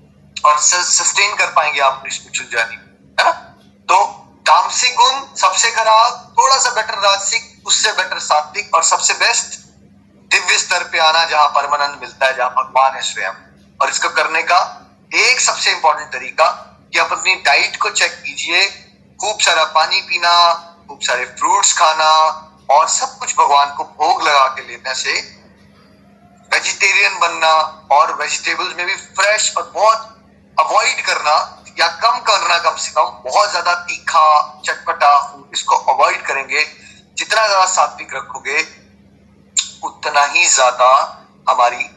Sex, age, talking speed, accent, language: male, 30-49, 100 wpm, native, Hindi